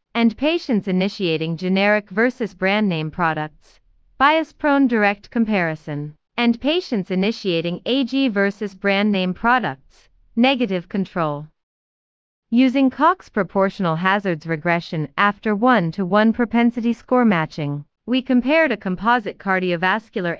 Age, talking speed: 30-49, 105 wpm